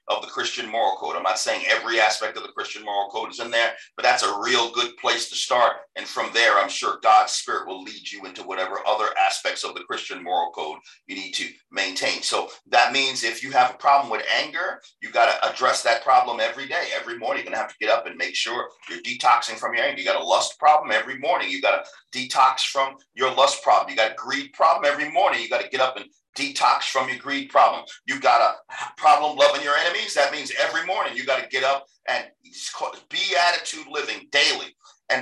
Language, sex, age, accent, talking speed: English, male, 50-69, American, 235 wpm